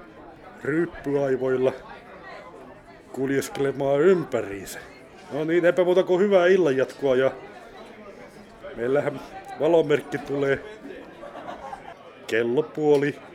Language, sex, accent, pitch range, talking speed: Finnish, male, native, 125-155 Hz, 65 wpm